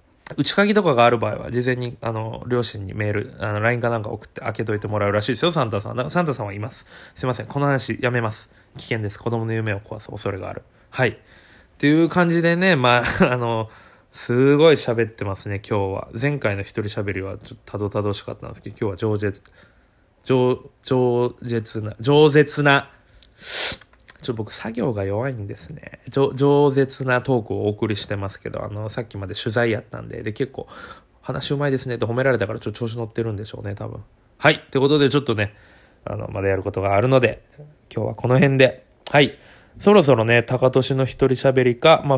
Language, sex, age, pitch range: Japanese, male, 20-39, 105-135 Hz